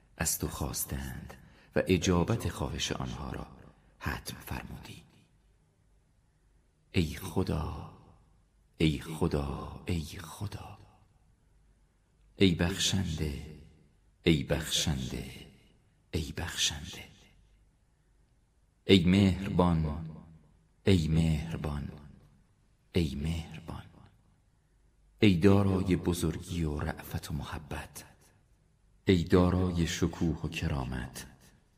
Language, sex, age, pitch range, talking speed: Persian, male, 50-69, 75-95 Hz, 75 wpm